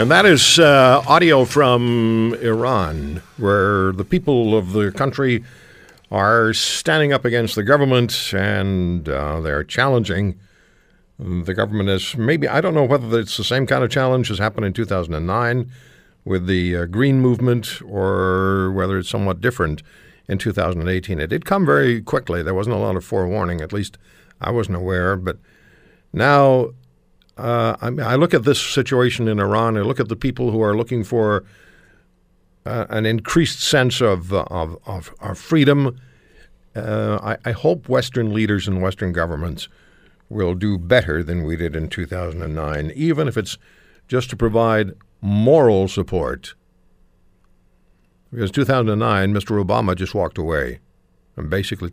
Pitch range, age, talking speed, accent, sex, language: 90-120 Hz, 60-79, 155 wpm, American, male, English